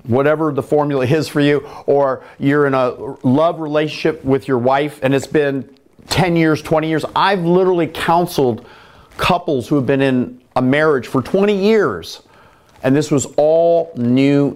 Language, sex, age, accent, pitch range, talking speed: English, male, 40-59, American, 130-175 Hz, 165 wpm